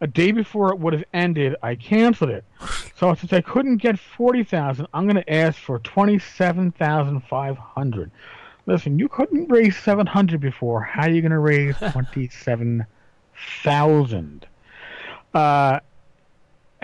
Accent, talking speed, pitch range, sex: American, 150 wpm, 145-195 Hz, male